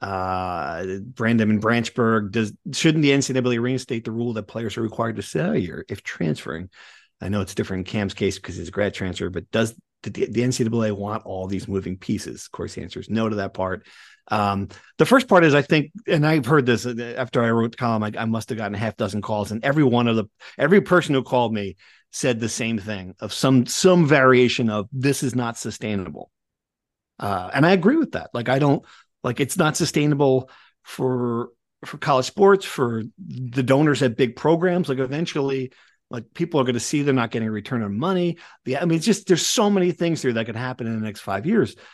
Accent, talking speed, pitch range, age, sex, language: American, 220 wpm, 110-145 Hz, 40-59, male, English